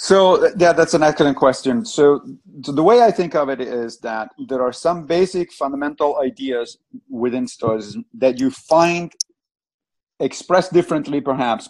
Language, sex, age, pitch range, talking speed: English, male, 40-59, 115-150 Hz, 155 wpm